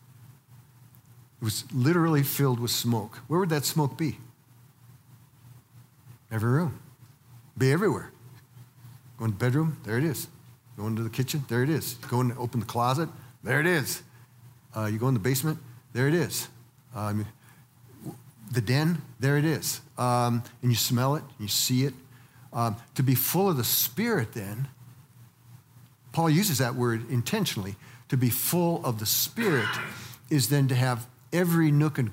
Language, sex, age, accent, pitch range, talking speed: English, male, 50-69, American, 120-140 Hz, 160 wpm